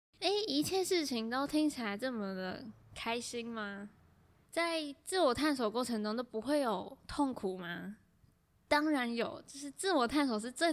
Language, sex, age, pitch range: Chinese, female, 10-29, 210-270 Hz